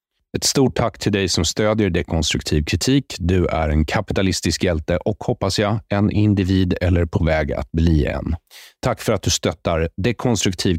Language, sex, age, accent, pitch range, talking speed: English, male, 30-49, Swedish, 80-110 Hz, 170 wpm